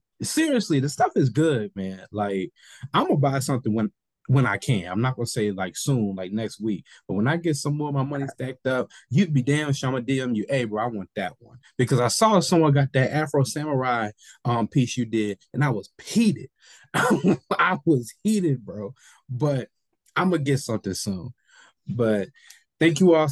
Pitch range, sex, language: 105-135 Hz, male, English